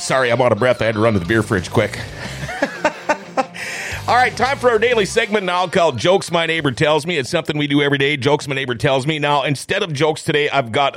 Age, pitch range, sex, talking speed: 40-59, 125-170 Hz, male, 250 wpm